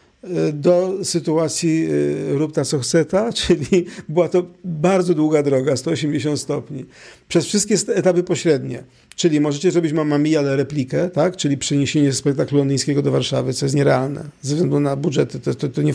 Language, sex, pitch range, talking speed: Polish, male, 150-180 Hz, 155 wpm